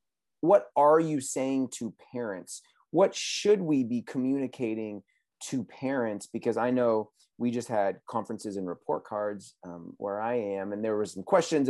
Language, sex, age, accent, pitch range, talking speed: English, male, 30-49, American, 110-145 Hz, 165 wpm